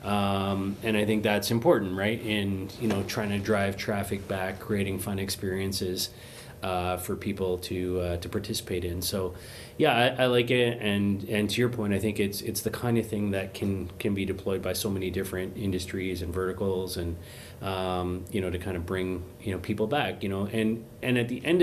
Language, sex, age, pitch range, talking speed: English, male, 30-49, 95-110 Hz, 210 wpm